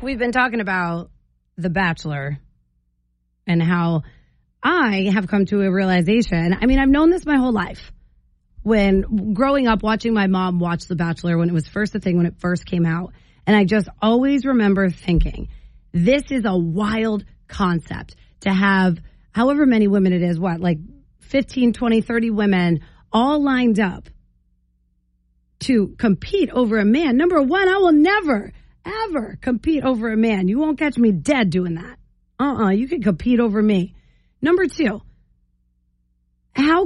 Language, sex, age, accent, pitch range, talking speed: English, female, 30-49, American, 175-245 Hz, 165 wpm